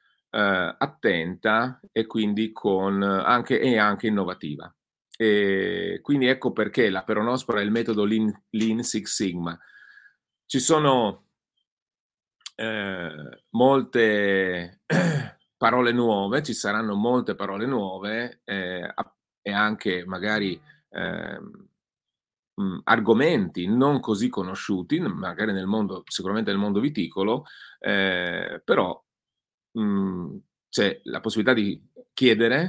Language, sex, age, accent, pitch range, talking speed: Italian, male, 30-49, native, 95-115 Hz, 105 wpm